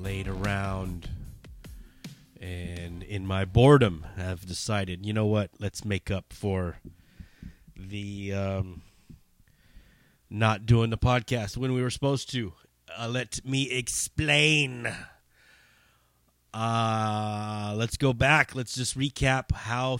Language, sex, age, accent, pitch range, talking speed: English, male, 30-49, American, 85-125 Hz, 115 wpm